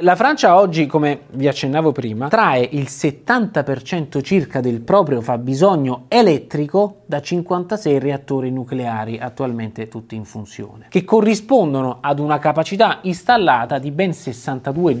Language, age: Italian, 20-39